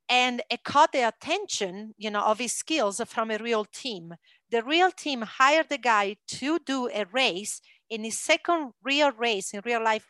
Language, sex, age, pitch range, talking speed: English, female, 40-59, 215-260 Hz, 190 wpm